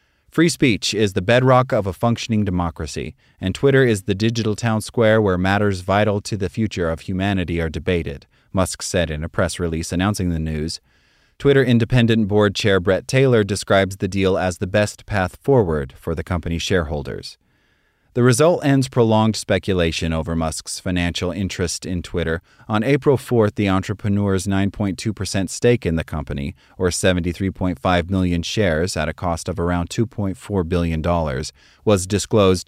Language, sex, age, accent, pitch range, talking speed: English, male, 30-49, American, 90-110 Hz, 160 wpm